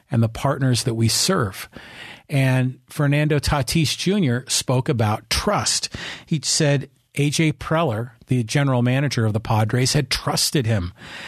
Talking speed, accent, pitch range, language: 140 wpm, American, 120-155 Hz, English